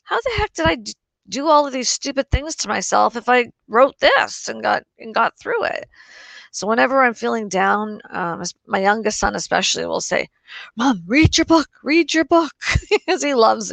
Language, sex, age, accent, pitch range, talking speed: English, female, 40-59, American, 215-360 Hz, 195 wpm